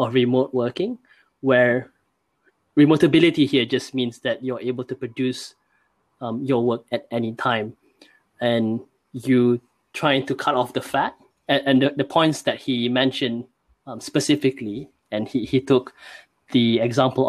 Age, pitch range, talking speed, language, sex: 20-39, 120-135 Hz, 150 wpm, English, male